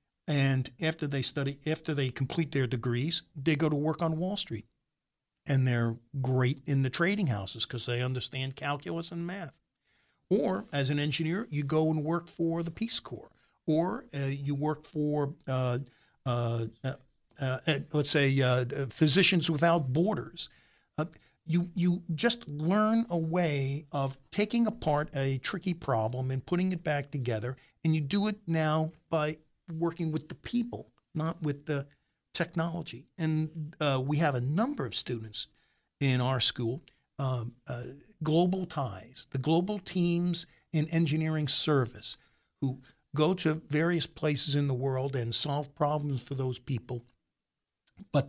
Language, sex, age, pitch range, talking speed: English, male, 50-69, 130-165 Hz, 160 wpm